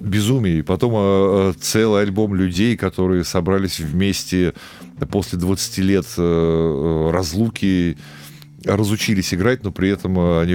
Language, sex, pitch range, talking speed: Russian, male, 80-110 Hz, 120 wpm